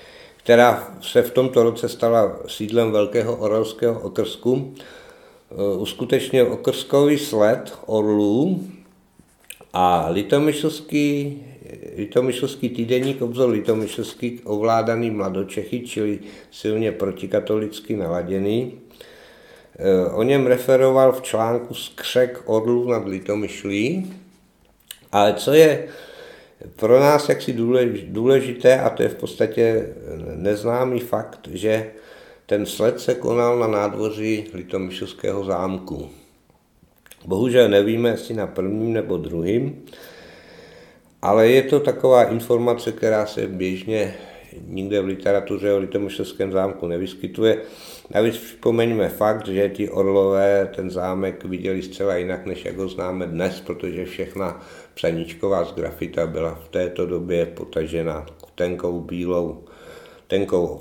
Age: 60-79